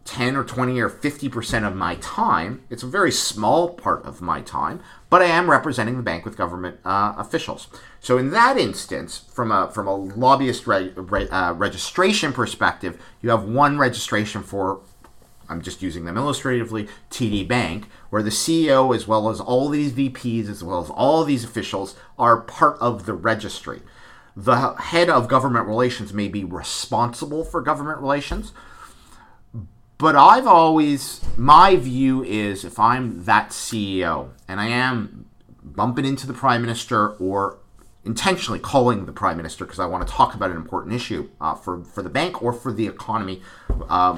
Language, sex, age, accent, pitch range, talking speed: English, male, 50-69, American, 100-130 Hz, 175 wpm